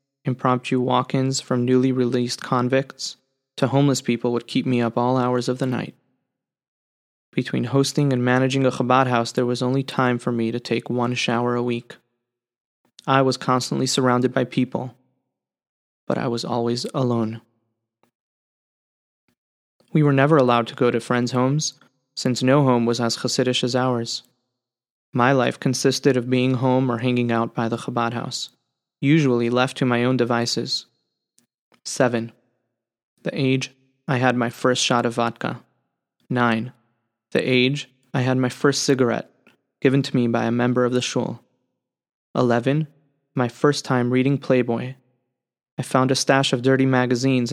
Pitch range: 120-130 Hz